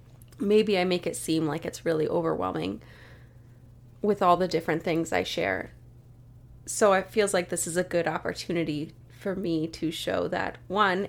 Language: English